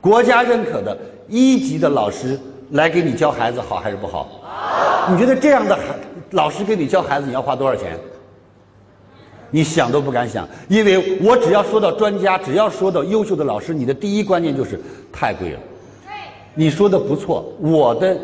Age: 50-69